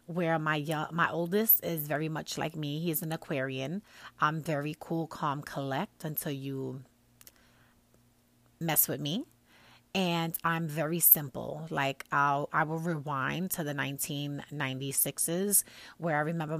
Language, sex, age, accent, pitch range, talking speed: English, female, 30-49, American, 140-165 Hz, 135 wpm